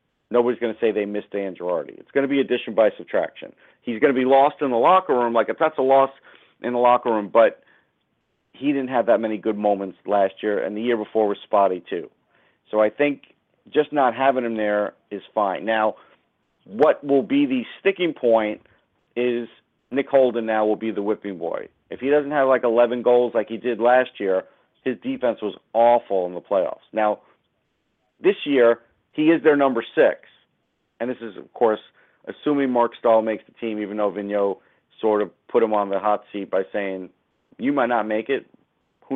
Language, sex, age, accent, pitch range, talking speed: English, male, 40-59, American, 105-135 Hz, 205 wpm